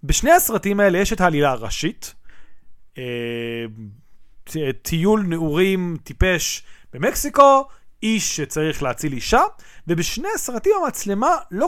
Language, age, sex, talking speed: Hebrew, 30-49, male, 100 wpm